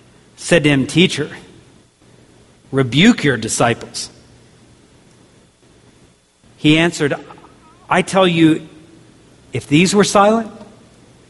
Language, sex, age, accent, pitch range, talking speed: English, male, 50-69, American, 140-180 Hz, 85 wpm